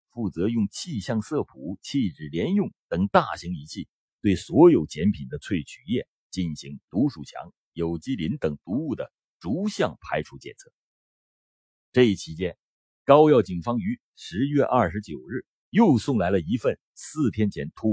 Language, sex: Chinese, male